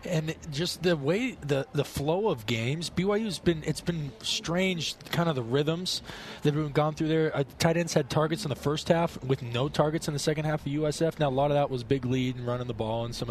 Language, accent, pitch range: English, American, 125-150 Hz